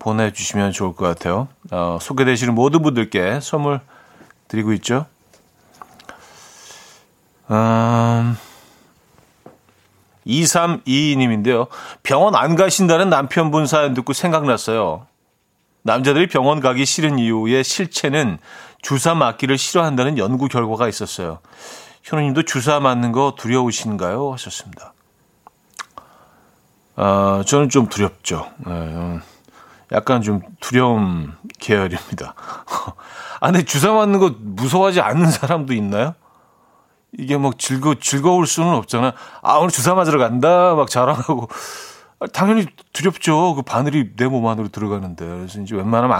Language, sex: Korean, male